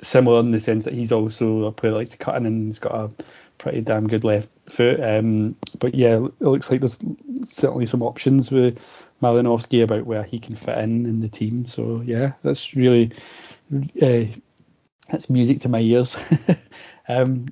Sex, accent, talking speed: male, British, 190 wpm